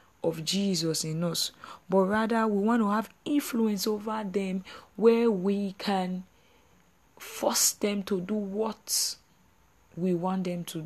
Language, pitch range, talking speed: English, 180-220 Hz, 140 wpm